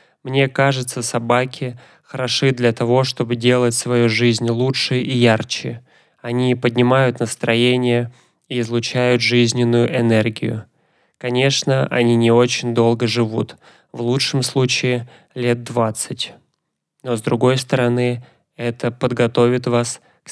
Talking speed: 115 wpm